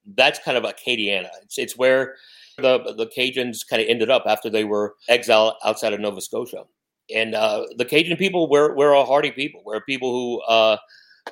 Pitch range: 110-135 Hz